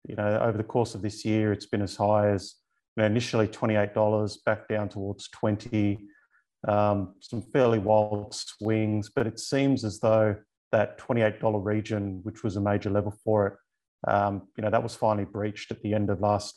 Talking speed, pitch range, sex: 190 wpm, 105-115 Hz, male